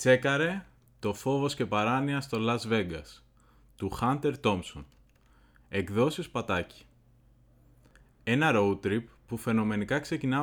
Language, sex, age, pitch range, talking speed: Greek, male, 20-39, 105-145 Hz, 110 wpm